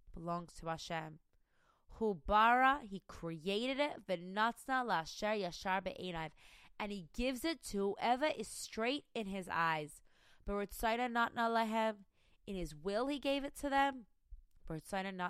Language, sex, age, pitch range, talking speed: English, female, 20-39, 180-265 Hz, 95 wpm